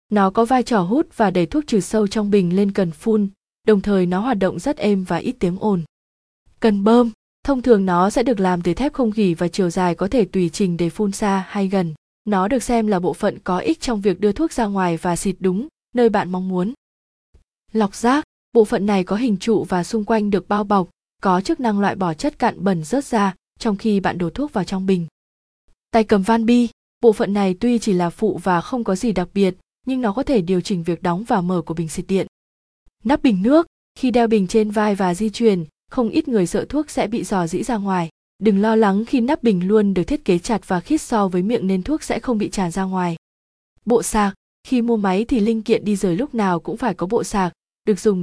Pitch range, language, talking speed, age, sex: 185-230 Hz, Vietnamese, 250 wpm, 20-39, female